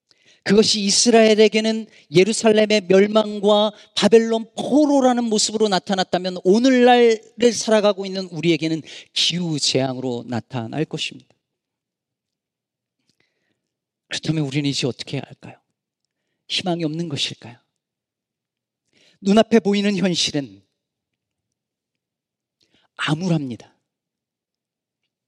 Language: Korean